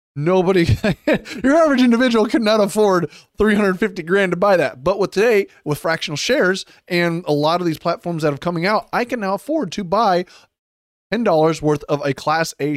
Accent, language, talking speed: American, English, 190 wpm